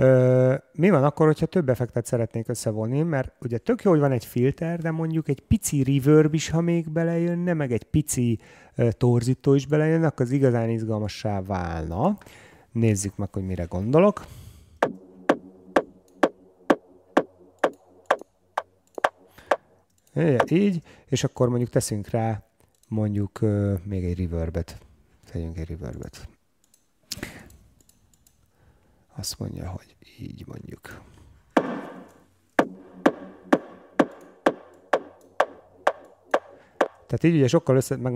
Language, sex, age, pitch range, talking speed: Hungarian, male, 30-49, 100-140 Hz, 105 wpm